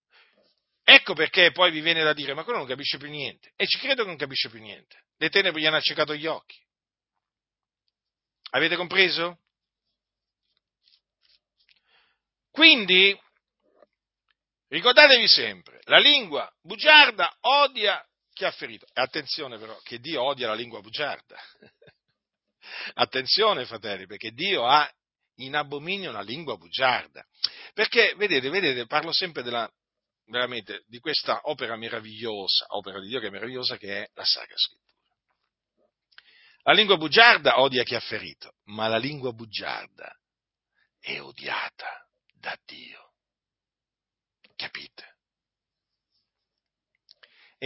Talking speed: 125 wpm